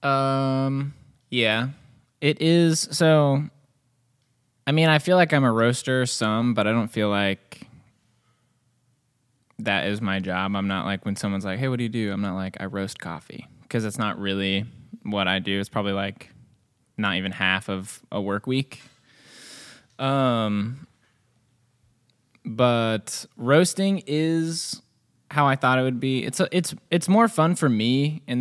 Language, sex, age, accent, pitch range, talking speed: English, male, 20-39, American, 100-130 Hz, 160 wpm